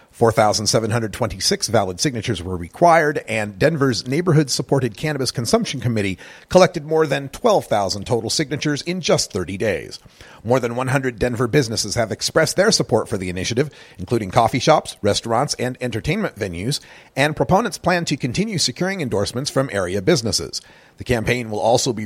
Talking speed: 150 wpm